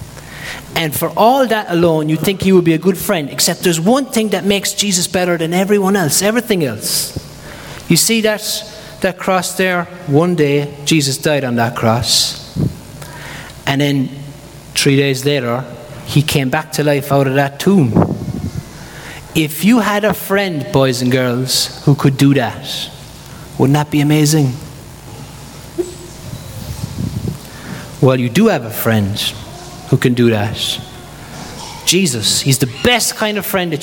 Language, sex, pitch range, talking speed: English, male, 130-175 Hz, 155 wpm